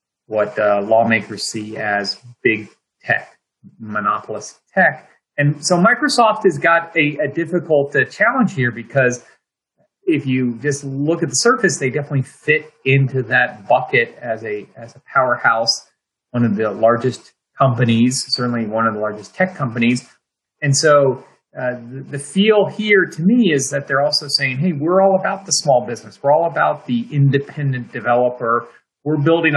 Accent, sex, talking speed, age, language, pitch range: American, male, 160 wpm, 30-49, English, 115-150 Hz